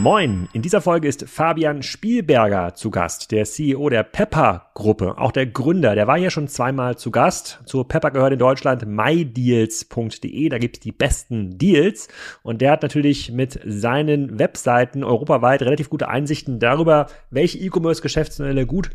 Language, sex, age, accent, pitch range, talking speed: German, male, 30-49, German, 130-155 Hz, 160 wpm